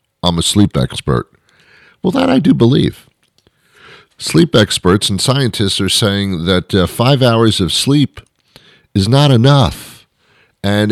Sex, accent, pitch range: male, American, 90-125 Hz